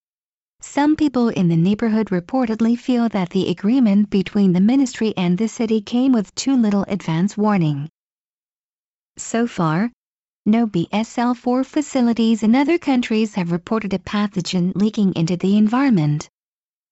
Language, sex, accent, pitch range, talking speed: English, female, American, 180-240 Hz, 135 wpm